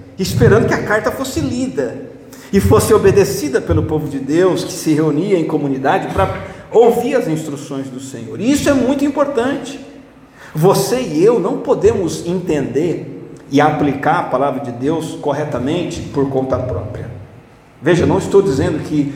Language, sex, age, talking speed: Portuguese, male, 50-69, 155 wpm